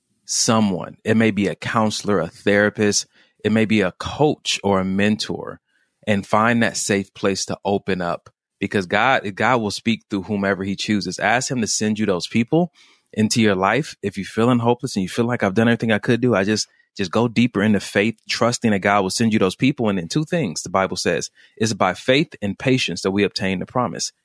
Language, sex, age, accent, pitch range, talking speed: English, male, 30-49, American, 100-120 Hz, 220 wpm